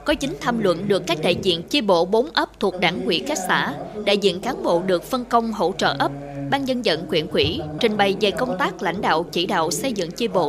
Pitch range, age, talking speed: 180-245 Hz, 20-39, 265 wpm